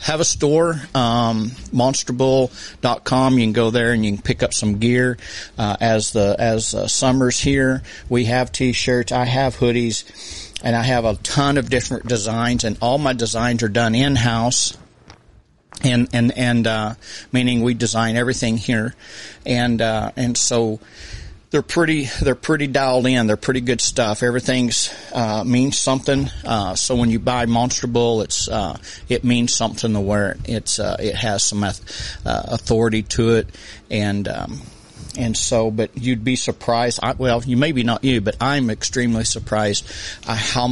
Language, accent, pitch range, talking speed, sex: English, American, 110-125 Hz, 170 wpm, male